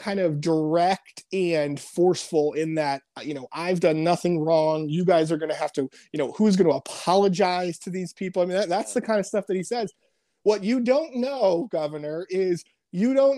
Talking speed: 210 wpm